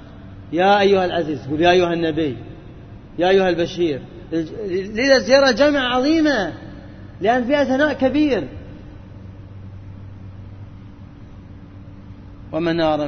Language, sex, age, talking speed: Arabic, male, 30-49, 85 wpm